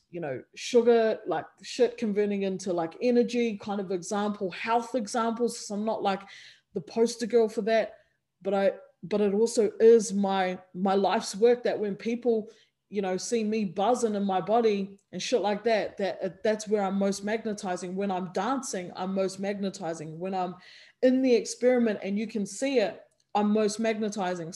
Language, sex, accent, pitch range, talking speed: English, female, Australian, 185-230 Hz, 180 wpm